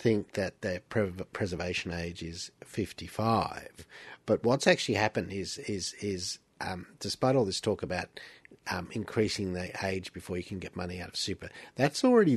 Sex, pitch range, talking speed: male, 95-115 Hz, 165 wpm